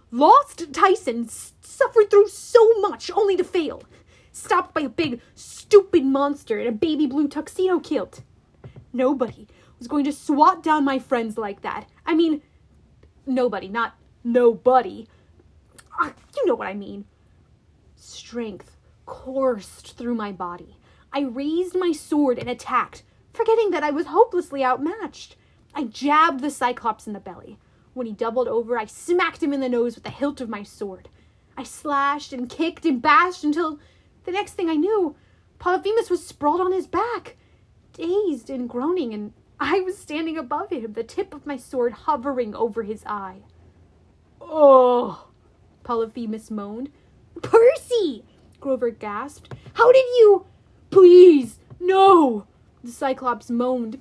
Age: 30-49